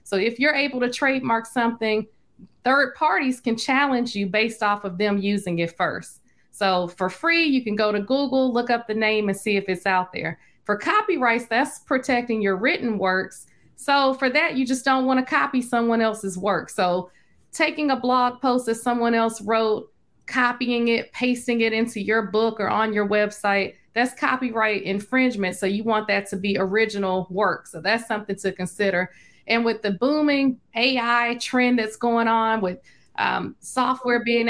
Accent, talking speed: American, 185 wpm